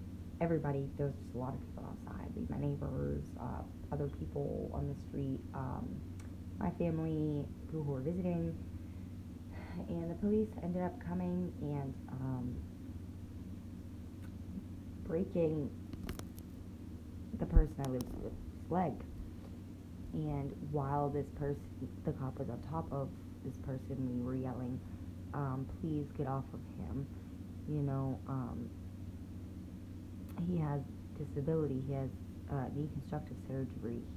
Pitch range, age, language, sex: 90-140 Hz, 20-39, English, female